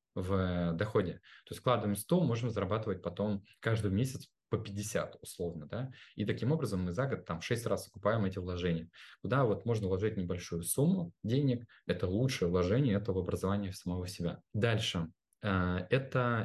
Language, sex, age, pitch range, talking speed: Russian, male, 20-39, 90-115 Hz, 160 wpm